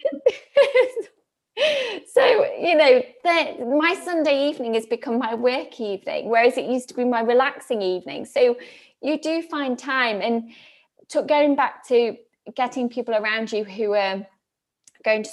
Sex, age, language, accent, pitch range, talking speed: female, 20-39, English, British, 215-275 Hz, 150 wpm